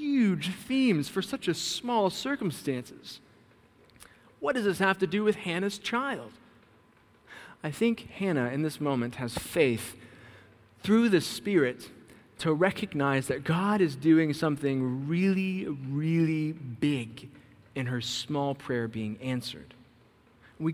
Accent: American